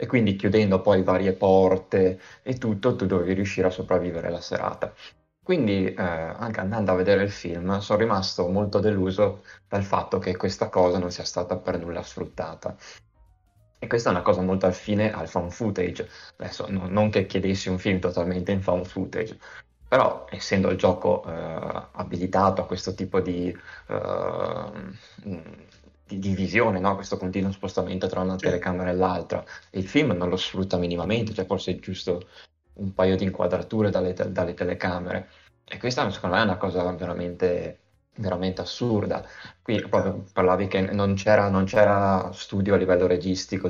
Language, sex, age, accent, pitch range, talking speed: Italian, male, 20-39, native, 90-100 Hz, 170 wpm